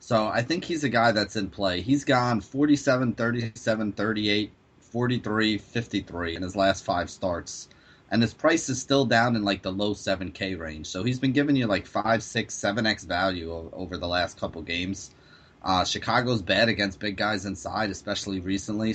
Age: 30-49